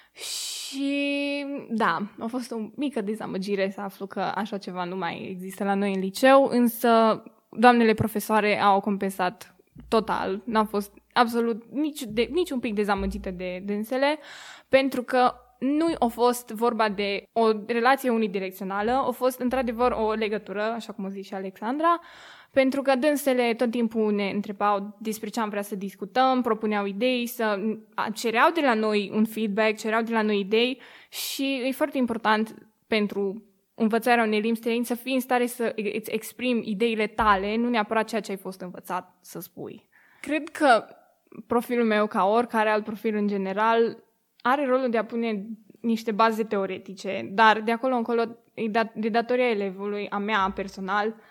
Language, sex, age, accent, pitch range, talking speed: Romanian, female, 10-29, native, 205-245 Hz, 165 wpm